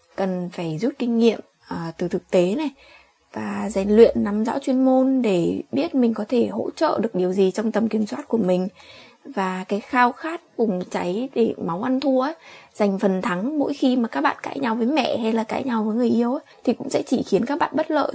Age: 20-39